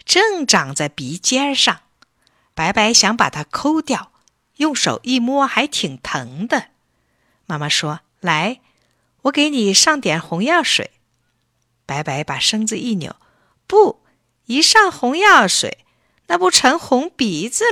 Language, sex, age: Chinese, female, 50-69